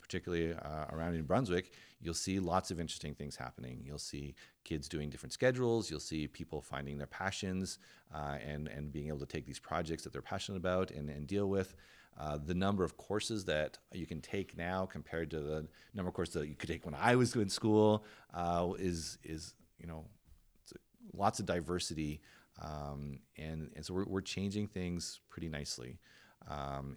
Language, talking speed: English, 190 wpm